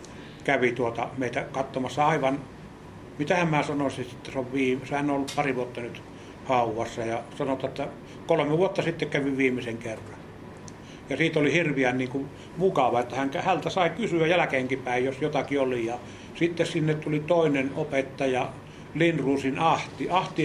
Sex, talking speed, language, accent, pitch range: male, 150 wpm, Finnish, native, 130-160 Hz